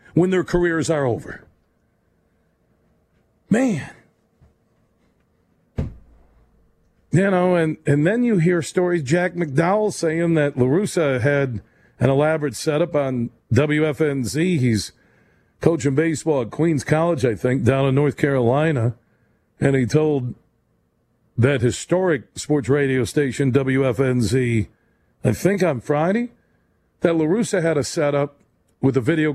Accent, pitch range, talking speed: American, 125-165 Hz, 120 wpm